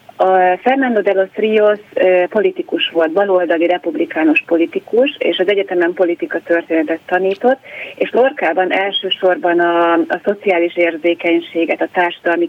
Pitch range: 170-195 Hz